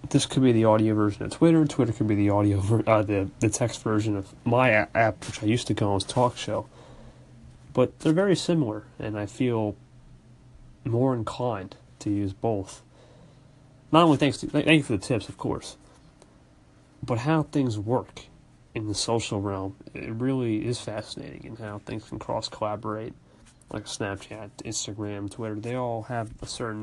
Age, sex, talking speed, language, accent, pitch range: 30-49, male, 175 wpm, English, American, 80-120 Hz